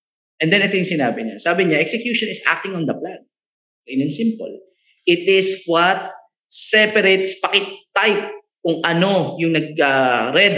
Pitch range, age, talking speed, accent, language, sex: 150-230 Hz, 20-39, 160 wpm, native, Filipino, male